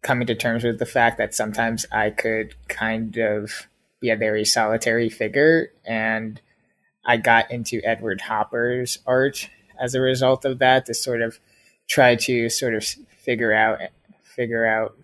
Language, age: English, 20-39